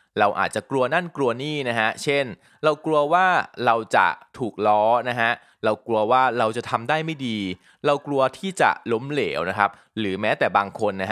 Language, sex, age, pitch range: Thai, male, 20-39, 105-145 Hz